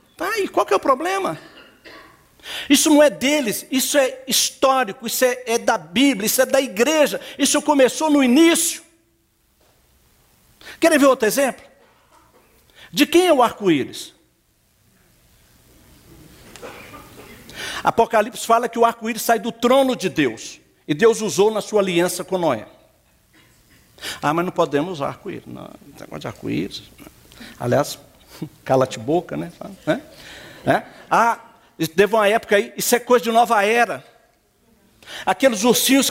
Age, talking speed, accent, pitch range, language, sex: 60-79, 140 wpm, Brazilian, 205-270 Hz, Portuguese, male